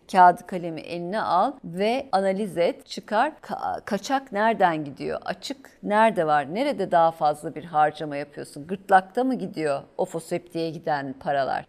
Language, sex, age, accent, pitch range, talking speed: Turkish, female, 50-69, native, 175-245 Hz, 150 wpm